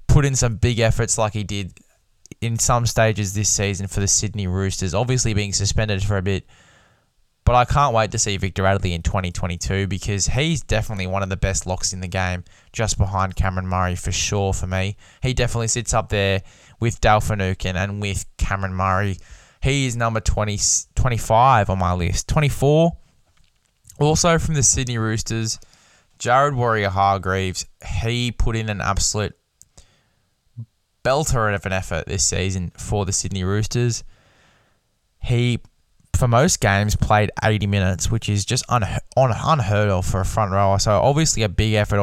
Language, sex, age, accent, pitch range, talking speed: English, male, 10-29, Australian, 95-120 Hz, 170 wpm